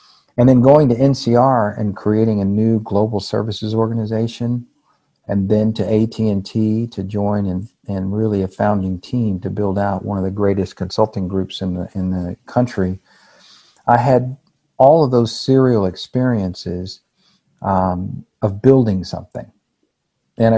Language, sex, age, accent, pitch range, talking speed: English, male, 50-69, American, 95-115 Hz, 145 wpm